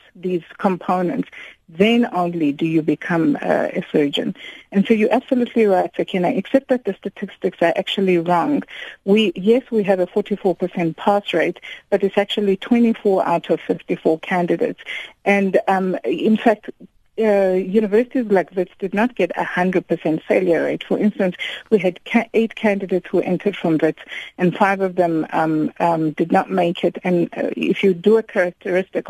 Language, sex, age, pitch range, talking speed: English, female, 50-69, 175-205 Hz, 170 wpm